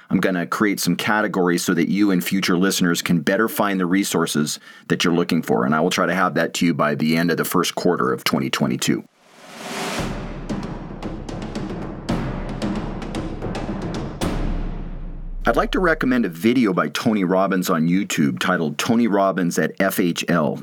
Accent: American